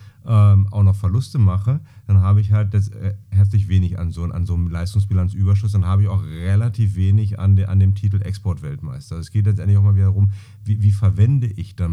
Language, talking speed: German, 220 wpm